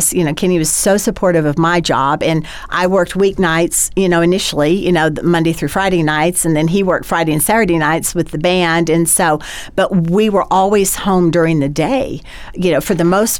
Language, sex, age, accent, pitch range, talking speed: English, female, 50-69, American, 155-185 Hz, 215 wpm